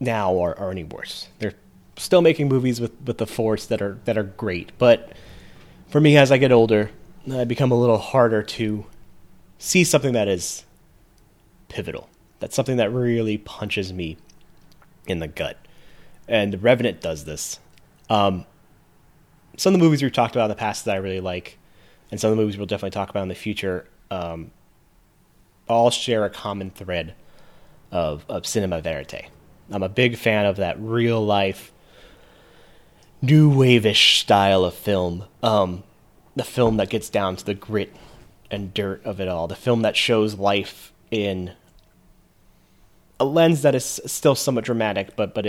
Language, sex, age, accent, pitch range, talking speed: English, male, 30-49, American, 95-115 Hz, 170 wpm